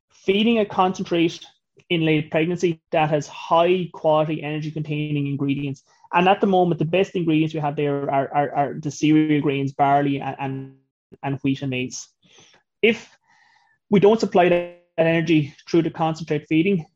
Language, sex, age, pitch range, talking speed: English, male, 20-39, 145-175 Hz, 160 wpm